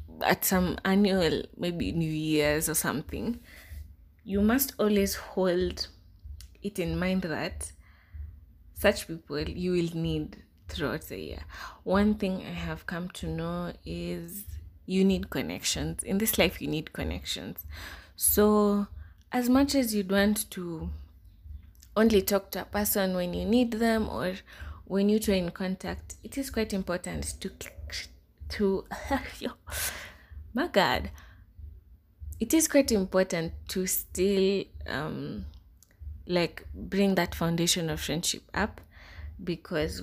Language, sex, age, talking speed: English, female, 20-39, 130 wpm